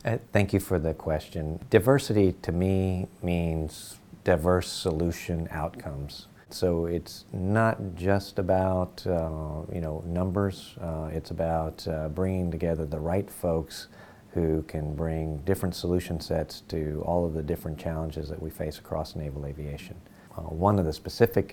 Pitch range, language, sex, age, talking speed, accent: 80-95 Hz, English, male, 40-59, 150 wpm, American